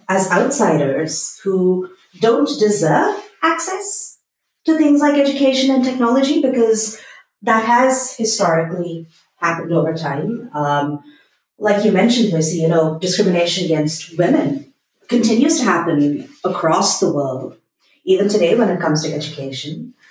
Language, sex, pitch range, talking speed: English, female, 170-245 Hz, 125 wpm